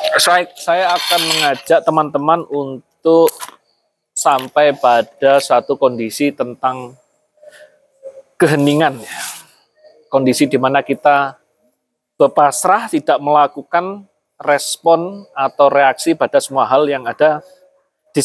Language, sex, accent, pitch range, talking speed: Indonesian, male, native, 135-170 Hz, 90 wpm